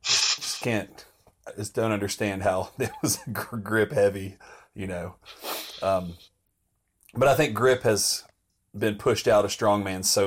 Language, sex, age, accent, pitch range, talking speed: English, male, 30-49, American, 95-110 Hz, 160 wpm